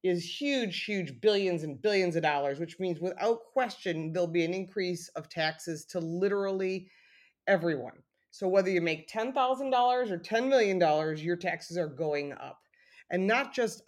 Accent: American